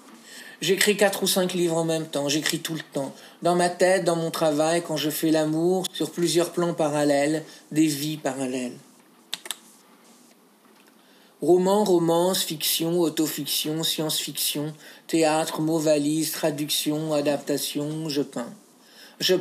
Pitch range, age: 150-180 Hz, 50-69